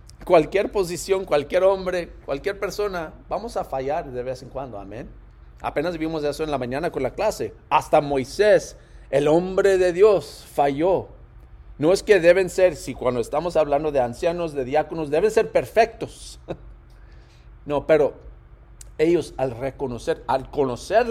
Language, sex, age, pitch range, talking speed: Spanish, male, 50-69, 125-165 Hz, 150 wpm